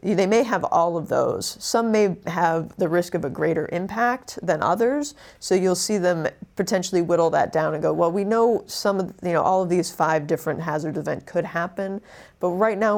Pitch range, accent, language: 155-185 Hz, American, English